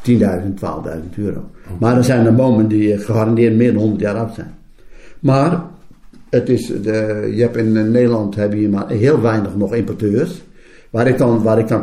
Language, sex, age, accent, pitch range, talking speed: Dutch, male, 60-79, Dutch, 105-140 Hz, 190 wpm